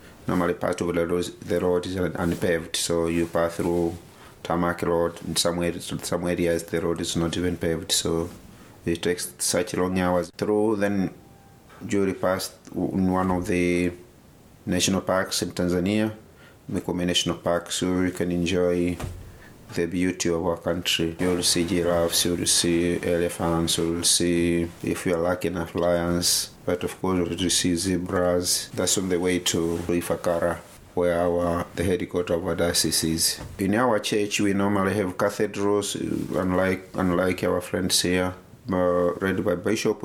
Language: English